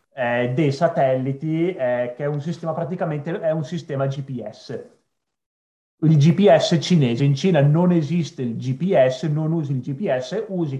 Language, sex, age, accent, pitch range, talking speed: Italian, male, 30-49, native, 130-160 Hz, 150 wpm